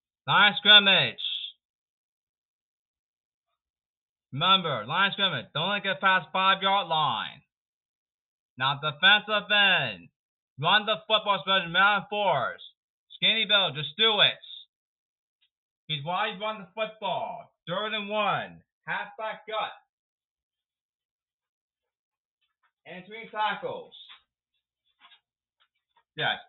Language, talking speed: English, 95 wpm